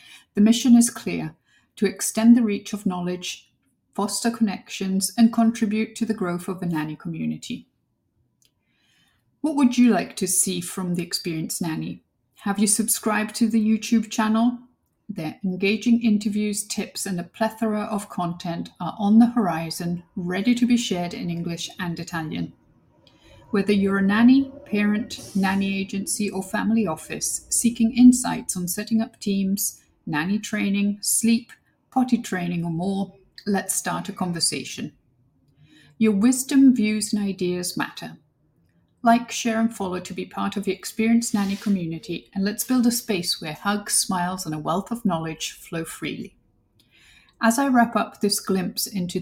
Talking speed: 155 wpm